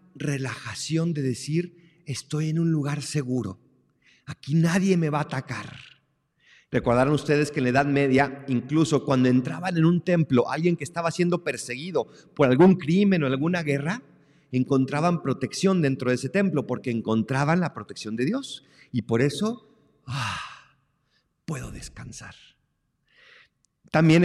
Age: 50-69